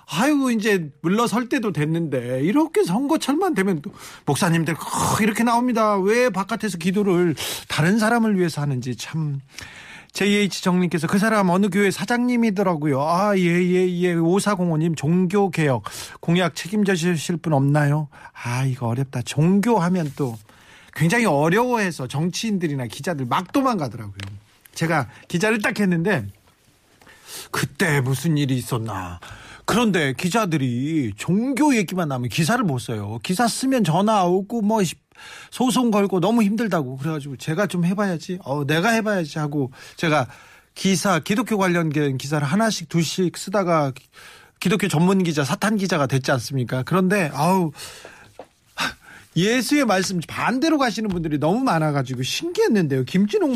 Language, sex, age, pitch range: Korean, male, 40-59, 145-210 Hz